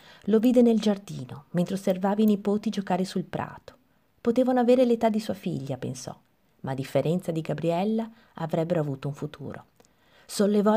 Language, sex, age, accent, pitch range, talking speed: Italian, female, 30-49, native, 155-210 Hz, 155 wpm